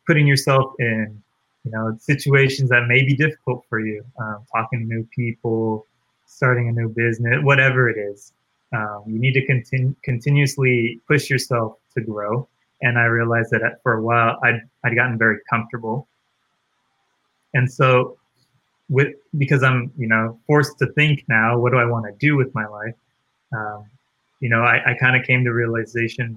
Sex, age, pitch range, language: male, 20-39, 115-135 Hz, English